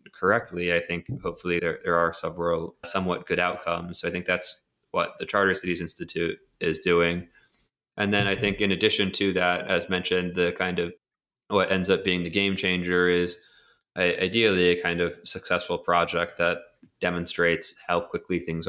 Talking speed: 175 wpm